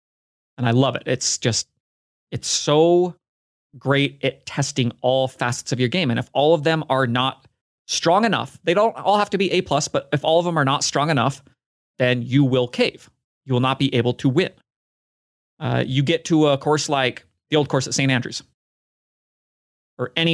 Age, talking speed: 30-49, 200 wpm